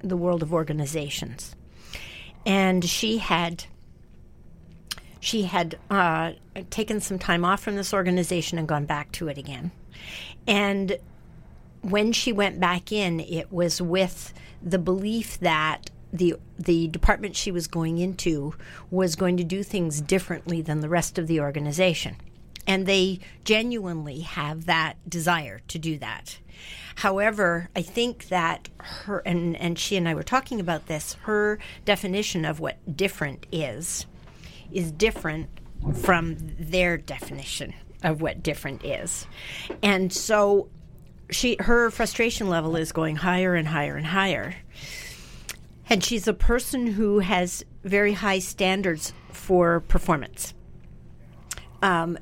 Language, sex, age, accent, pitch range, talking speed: English, female, 50-69, American, 160-195 Hz, 135 wpm